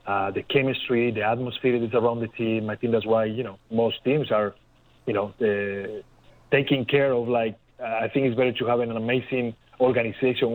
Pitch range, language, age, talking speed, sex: 110-130 Hz, English, 30-49, 200 wpm, male